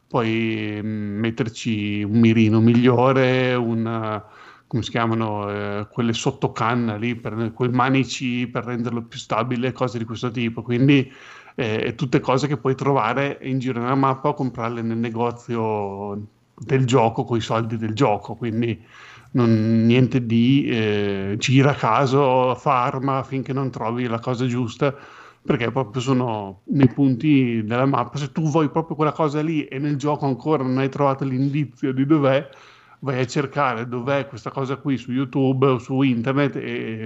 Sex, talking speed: male, 160 wpm